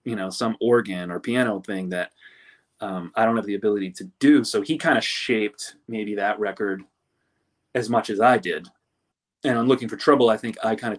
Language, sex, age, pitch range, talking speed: English, male, 30-49, 95-120 Hz, 215 wpm